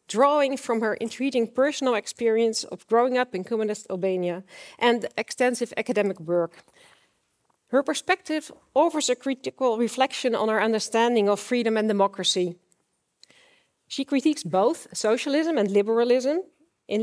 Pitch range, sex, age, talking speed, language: 205-255 Hz, female, 40-59, 125 wpm, Dutch